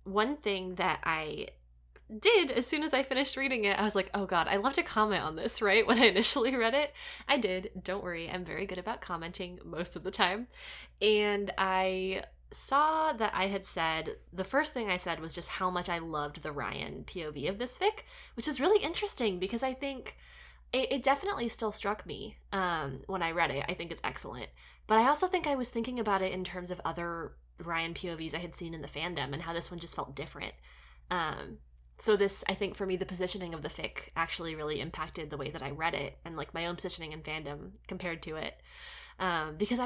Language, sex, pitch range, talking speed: English, female, 175-250 Hz, 225 wpm